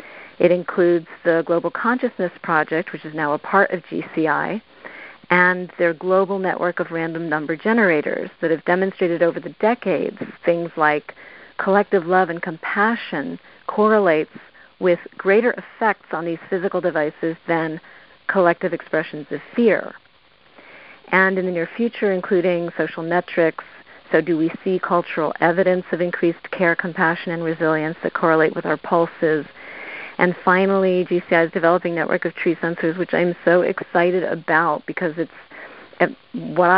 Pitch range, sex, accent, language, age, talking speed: 165-190 Hz, female, American, English, 40-59, 145 wpm